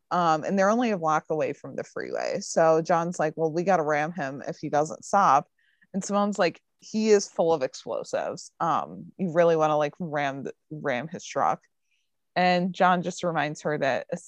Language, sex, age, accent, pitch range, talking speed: English, female, 20-39, American, 160-190 Hz, 195 wpm